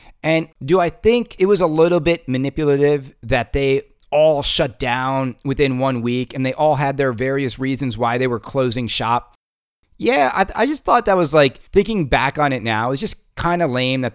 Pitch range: 115-150 Hz